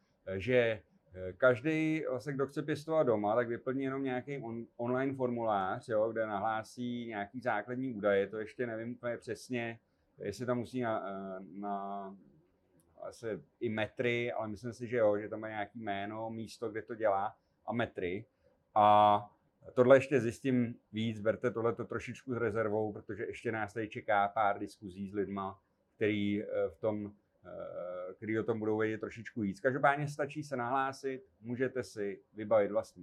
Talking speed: 160 wpm